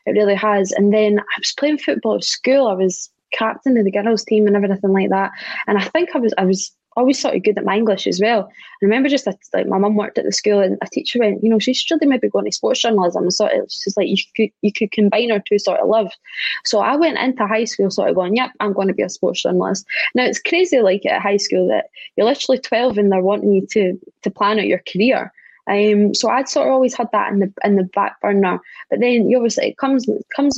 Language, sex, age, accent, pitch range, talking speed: English, female, 20-39, British, 195-235 Hz, 265 wpm